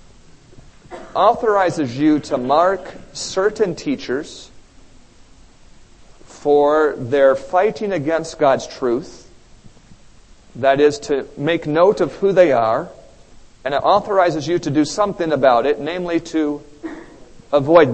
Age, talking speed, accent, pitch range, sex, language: 40-59, 110 wpm, American, 130-175 Hz, male, English